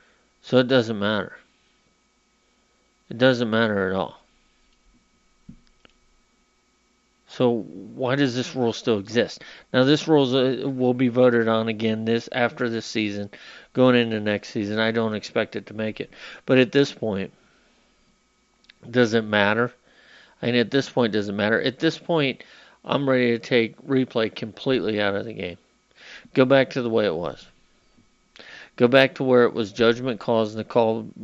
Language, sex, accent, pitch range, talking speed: English, male, American, 115-130 Hz, 160 wpm